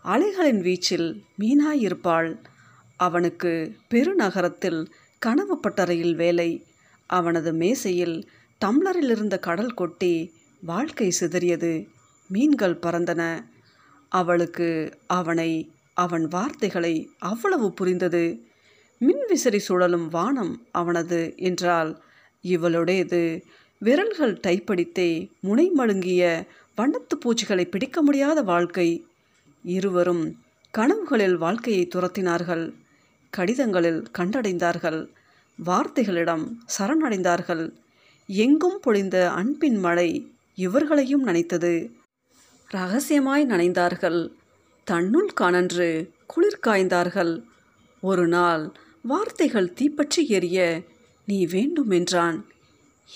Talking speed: 70 wpm